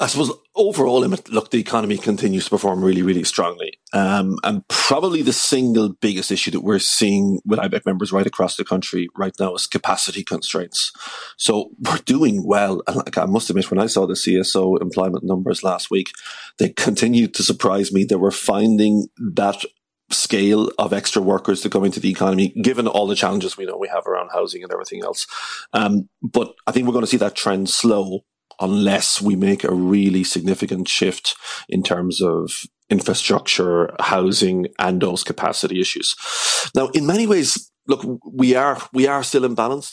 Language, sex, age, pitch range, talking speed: English, male, 40-59, 95-115 Hz, 180 wpm